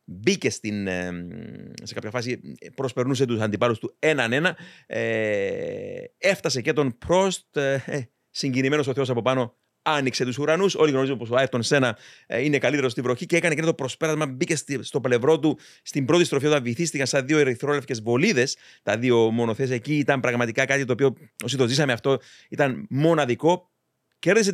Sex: male